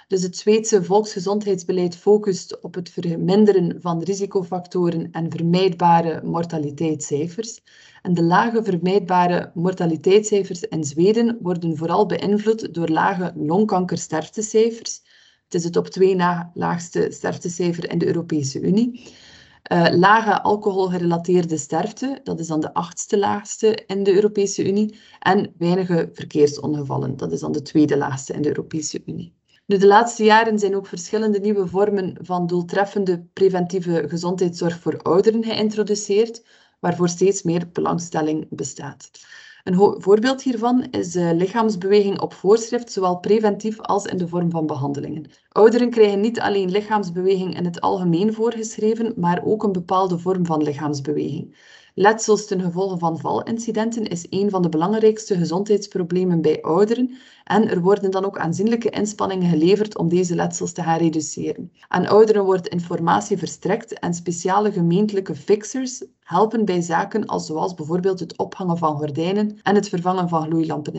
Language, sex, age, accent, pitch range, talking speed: Dutch, female, 20-39, Dutch, 170-210 Hz, 140 wpm